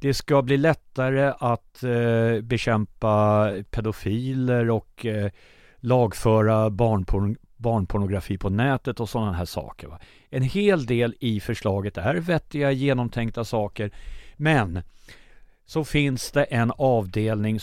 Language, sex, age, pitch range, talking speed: Swedish, male, 50-69, 105-135 Hz, 105 wpm